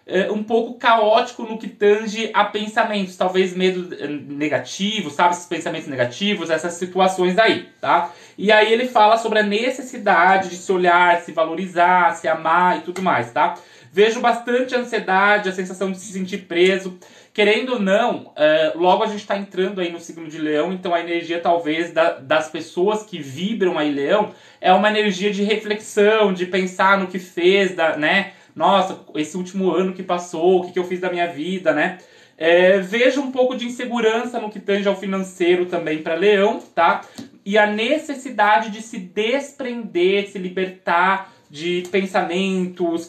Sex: male